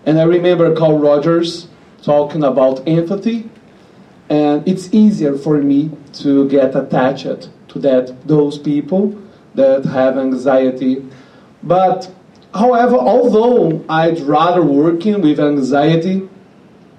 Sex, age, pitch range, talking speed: male, 40-59, 140-185 Hz, 110 wpm